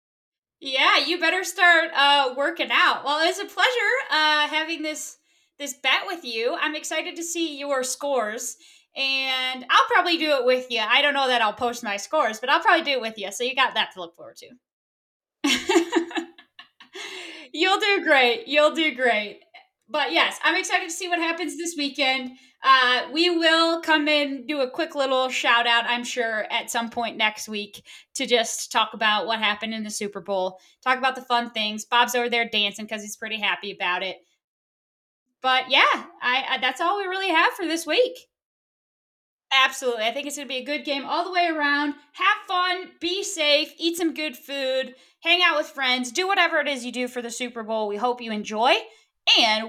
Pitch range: 240-330 Hz